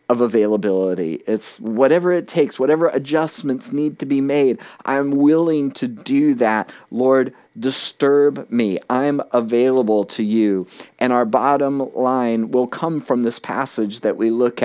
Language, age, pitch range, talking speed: English, 40-59, 105-140 Hz, 145 wpm